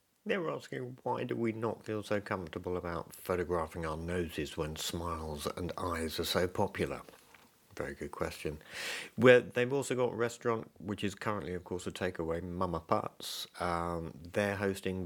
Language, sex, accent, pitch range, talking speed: English, male, British, 85-100 Hz, 165 wpm